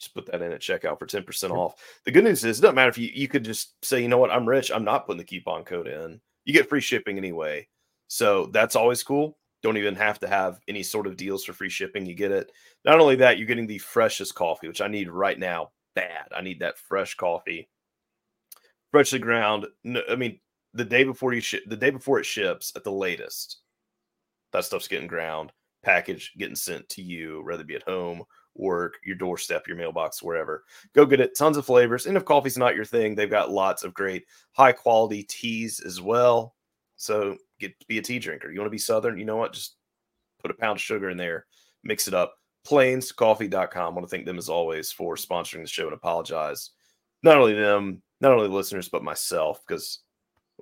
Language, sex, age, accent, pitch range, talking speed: English, male, 30-49, American, 100-145 Hz, 220 wpm